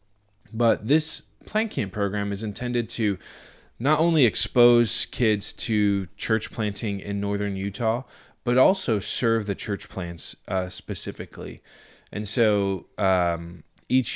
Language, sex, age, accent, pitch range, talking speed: English, male, 20-39, American, 95-110 Hz, 125 wpm